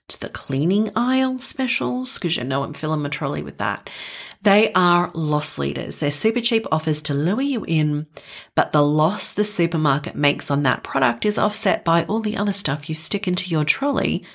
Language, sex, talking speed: English, female, 190 wpm